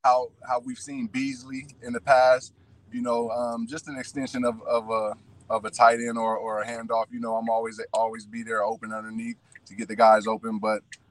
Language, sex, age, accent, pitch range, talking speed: English, male, 20-39, American, 115-135 Hz, 215 wpm